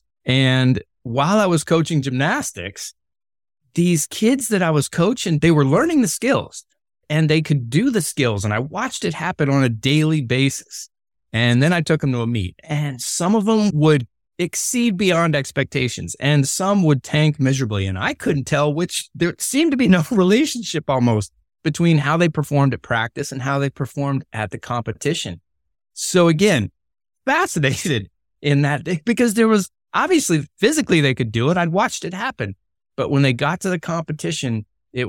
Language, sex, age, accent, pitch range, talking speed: English, male, 30-49, American, 115-160 Hz, 180 wpm